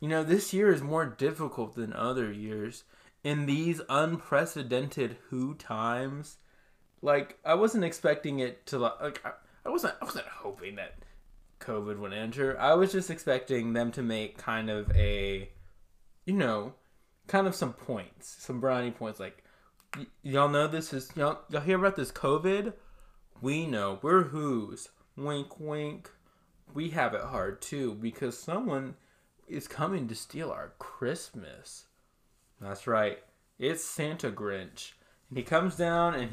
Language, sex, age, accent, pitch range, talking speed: English, male, 20-39, American, 105-160 Hz, 150 wpm